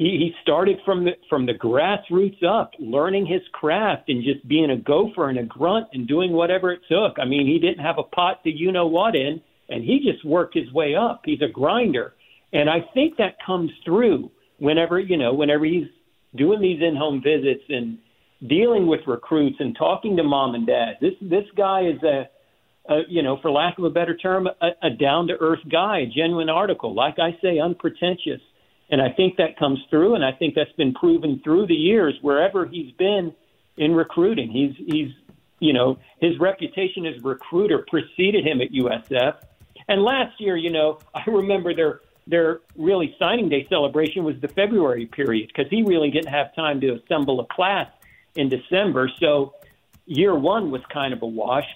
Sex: male